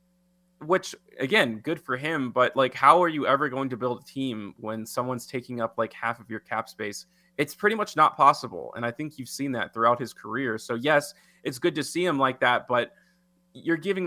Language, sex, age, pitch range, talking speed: English, male, 20-39, 120-165 Hz, 220 wpm